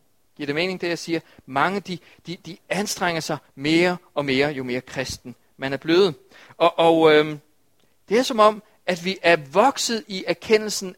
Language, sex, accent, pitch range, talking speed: Danish, male, native, 130-205 Hz, 200 wpm